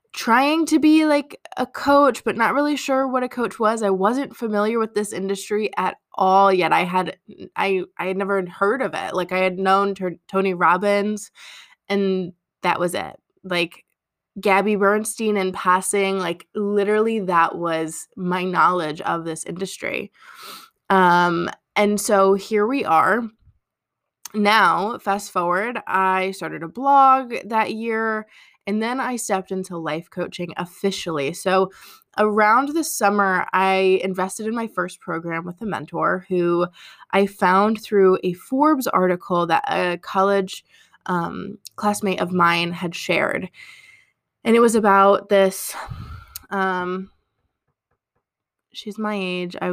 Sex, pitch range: female, 185-225 Hz